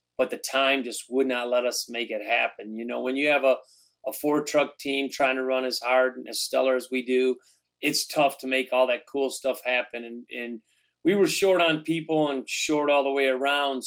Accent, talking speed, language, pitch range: American, 235 wpm, English, 130-145 Hz